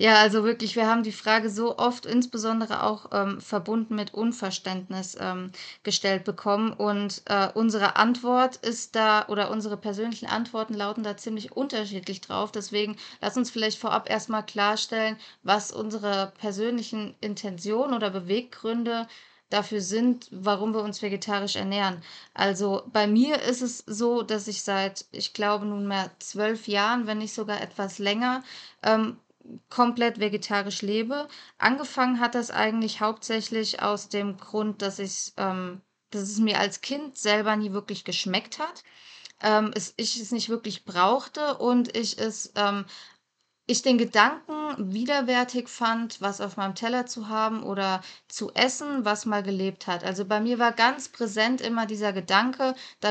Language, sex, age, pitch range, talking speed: German, female, 20-39, 200-230 Hz, 150 wpm